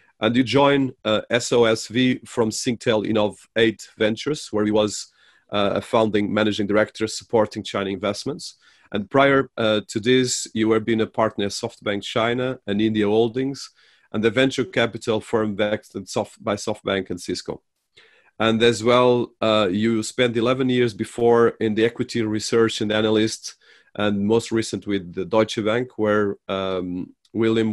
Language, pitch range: English, 100-115 Hz